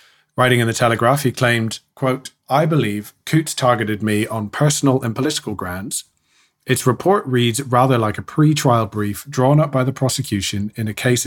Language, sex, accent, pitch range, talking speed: English, male, British, 110-130 Hz, 175 wpm